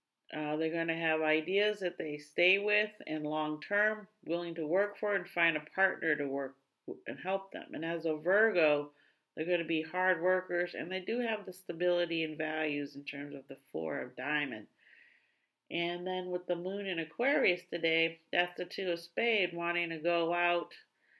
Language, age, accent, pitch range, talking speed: English, 40-59, American, 160-200 Hz, 195 wpm